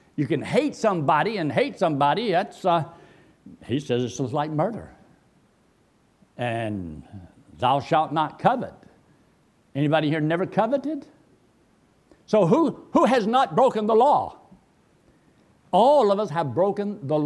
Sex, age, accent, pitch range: male, 60-79, American, 160-225 Hz